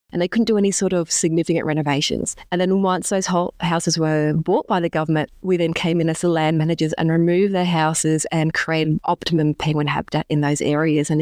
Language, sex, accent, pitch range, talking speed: English, female, Australian, 160-190 Hz, 220 wpm